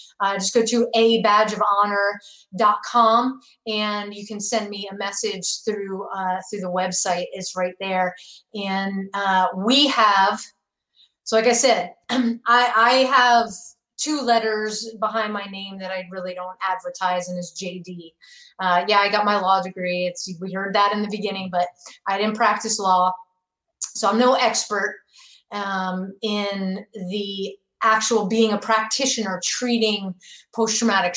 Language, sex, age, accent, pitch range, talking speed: English, female, 30-49, American, 190-230 Hz, 145 wpm